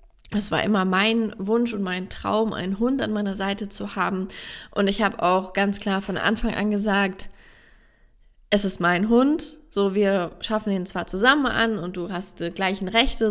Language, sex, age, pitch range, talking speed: German, female, 20-39, 185-220 Hz, 190 wpm